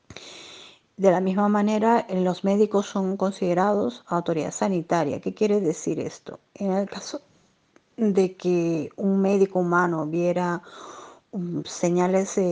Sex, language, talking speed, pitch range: female, Spanish, 115 wpm, 165-195 Hz